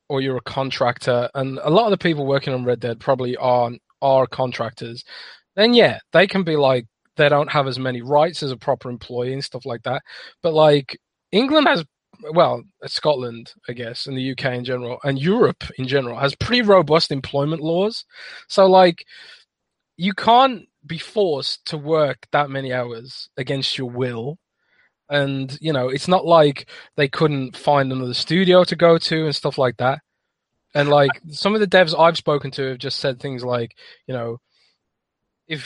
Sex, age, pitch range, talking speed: male, 20-39, 130-165 Hz, 185 wpm